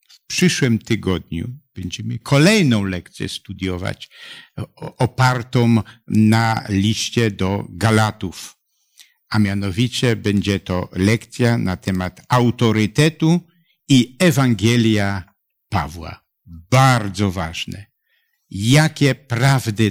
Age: 60-79